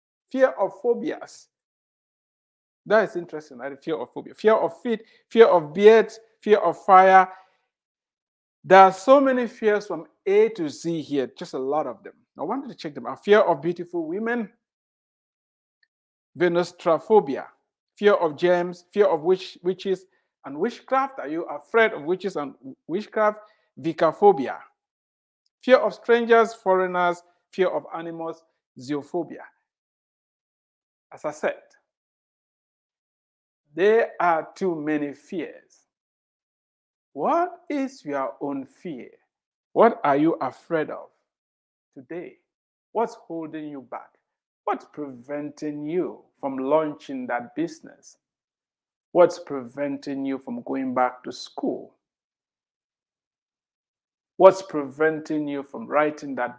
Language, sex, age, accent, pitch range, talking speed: English, male, 50-69, Nigerian, 145-225 Hz, 120 wpm